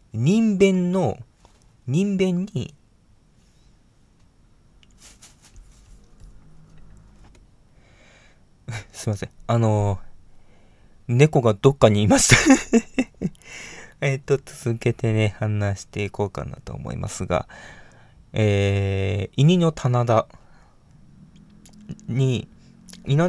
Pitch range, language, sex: 110-175 Hz, Japanese, male